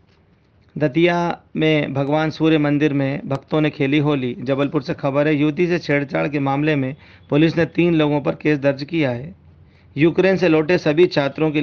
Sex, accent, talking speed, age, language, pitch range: male, native, 180 wpm, 50-69, Hindi, 135-155 Hz